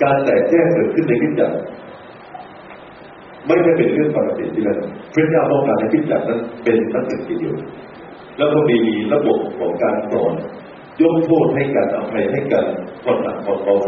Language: Thai